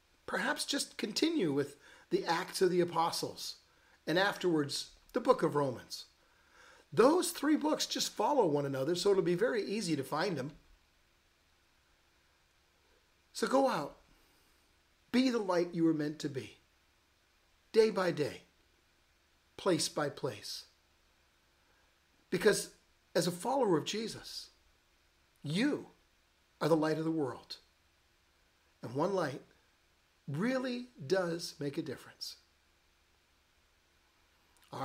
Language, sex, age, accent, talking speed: English, male, 50-69, American, 120 wpm